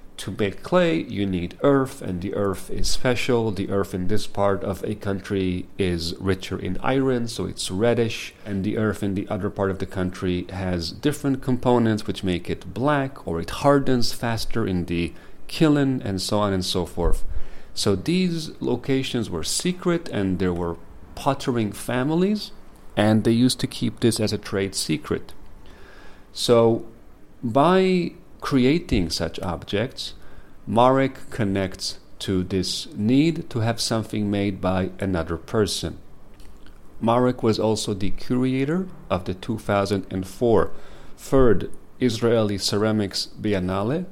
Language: Hebrew